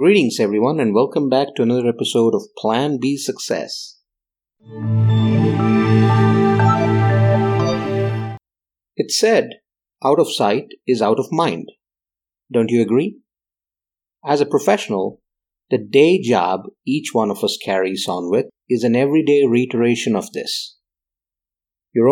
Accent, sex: Indian, male